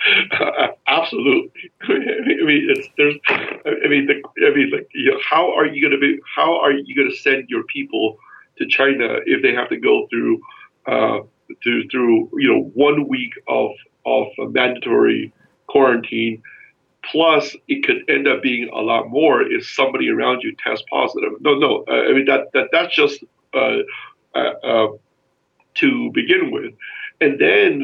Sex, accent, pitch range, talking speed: male, American, 330-410 Hz, 170 wpm